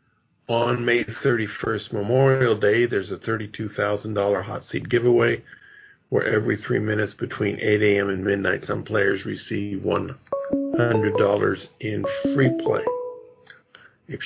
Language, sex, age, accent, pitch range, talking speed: English, male, 50-69, American, 105-130 Hz, 120 wpm